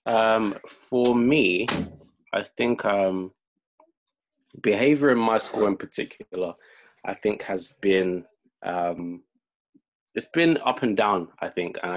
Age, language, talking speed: 20-39, English, 125 wpm